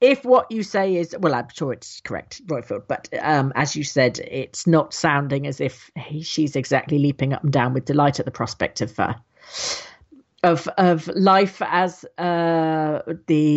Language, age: English, 40-59